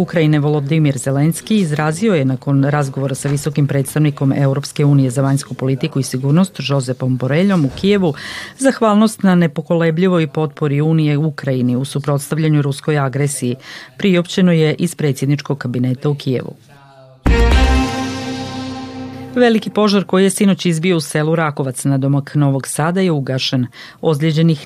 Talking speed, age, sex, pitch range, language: 130 wpm, 40-59, female, 135-165 Hz, Croatian